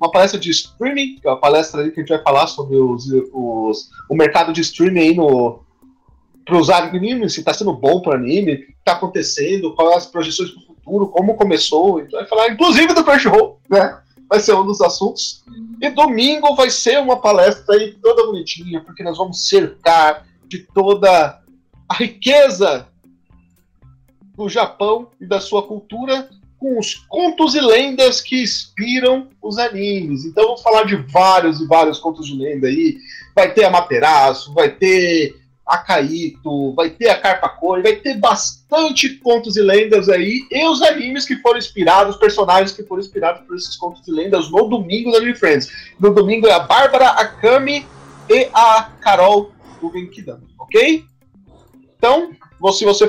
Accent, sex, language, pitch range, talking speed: Brazilian, male, Portuguese, 165-255 Hz, 180 wpm